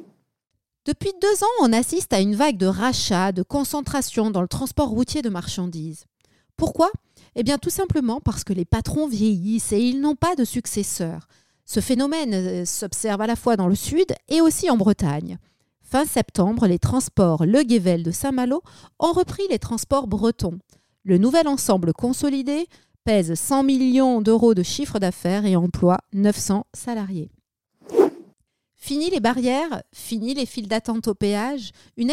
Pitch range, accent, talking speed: 190-265 Hz, French, 160 wpm